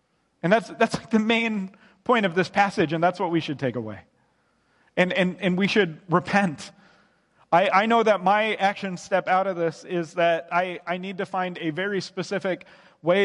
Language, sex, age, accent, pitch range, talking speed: English, male, 30-49, American, 155-190 Hz, 200 wpm